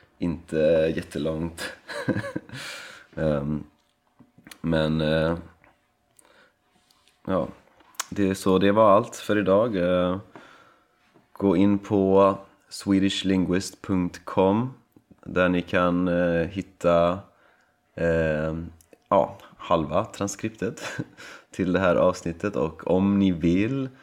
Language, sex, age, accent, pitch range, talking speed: Swedish, male, 30-49, native, 85-100 Hz, 75 wpm